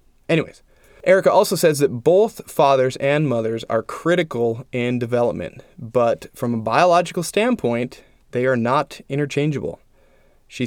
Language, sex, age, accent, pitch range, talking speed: English, male, 20-39, American, 120-160 Hz, 130 wpm